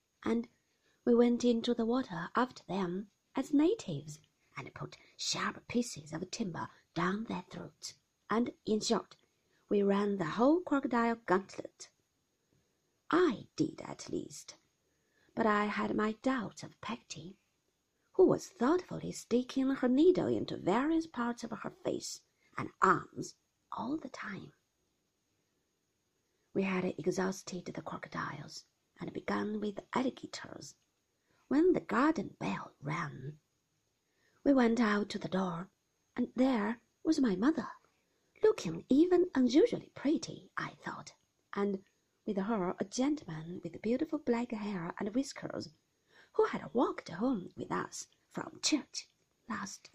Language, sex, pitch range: Chinese, female, 190-270 Hz